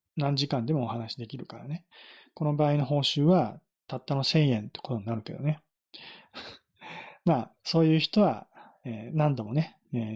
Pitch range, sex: 125-170 Hz, male